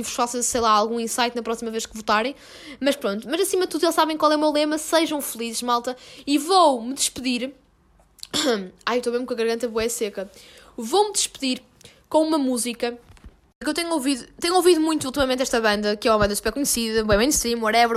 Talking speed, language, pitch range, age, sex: 215 wpm, Portuguese, 230-290 Hz, 10-29, female